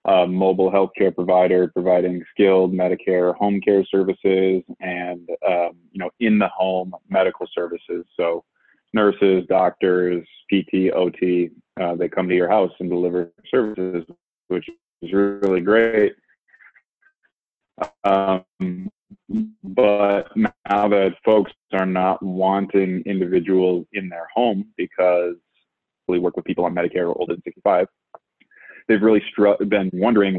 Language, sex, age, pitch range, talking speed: English, male, 20-39, 90-100 Hz, 125 wpm